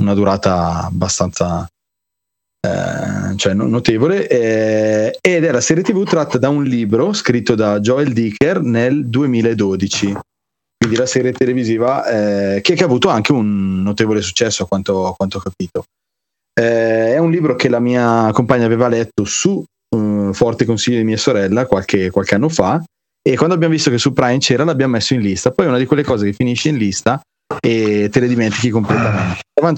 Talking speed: 175 wpm